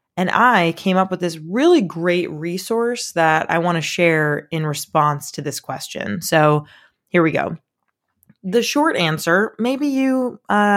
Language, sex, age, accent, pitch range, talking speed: English, female, 20-39, American, 160-210 Hz, 160 wpm